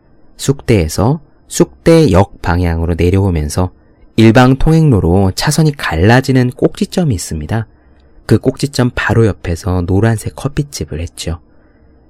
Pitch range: 85-125 Hz